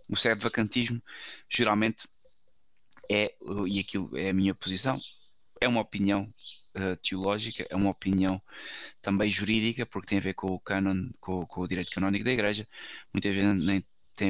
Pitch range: 95-110 Hz